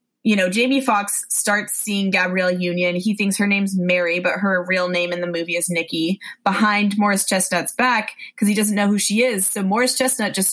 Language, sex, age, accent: English, female, 20-39, American